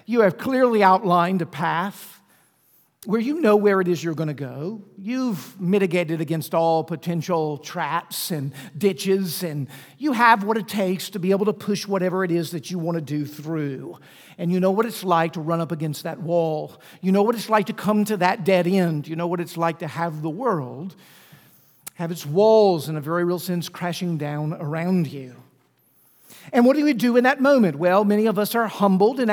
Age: 50-69